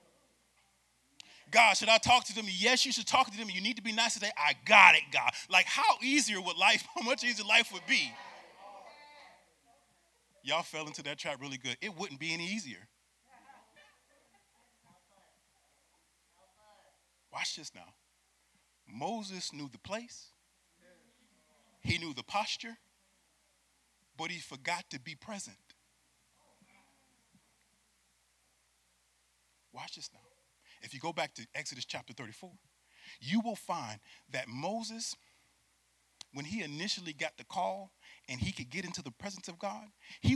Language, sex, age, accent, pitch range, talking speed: English, male, 30-49, American, 135-215 Hz, 140 wpm